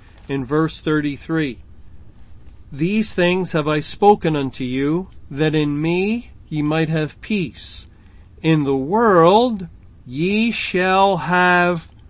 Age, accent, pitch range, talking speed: 50-69, American, 140-180 Hz, 115 wpm